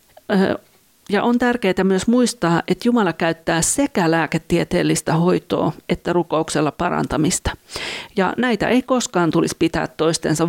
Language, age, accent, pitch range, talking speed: Finnish, 50-69, native, 165-210 Hz, 120 wpm